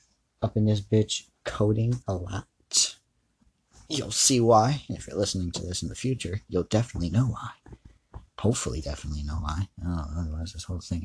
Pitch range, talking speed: 90-115 Hz, 170 wpm